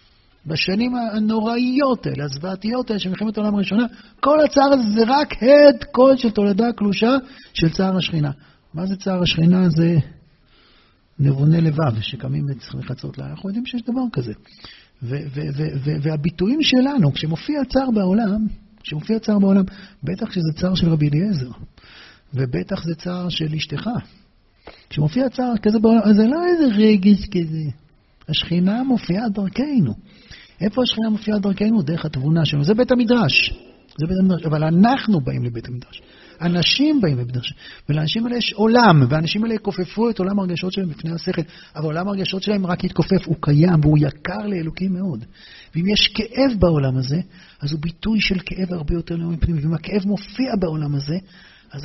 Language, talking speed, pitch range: Hebrew, 160 wpm, 160-230 Hz